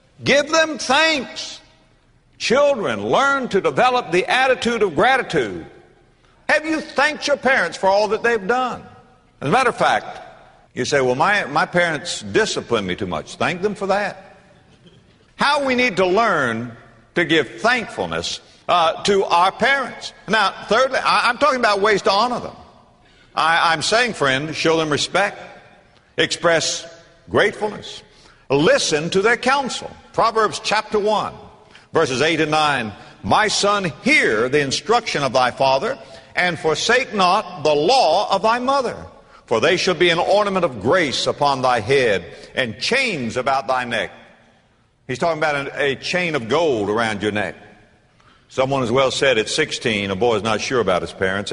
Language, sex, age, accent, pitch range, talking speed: English, male, 60-79, American, 135-220 Hz, 160 wpm